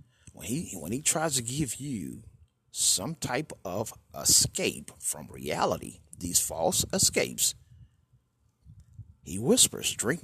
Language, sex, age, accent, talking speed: English, male, 50-69, American, 110 wpm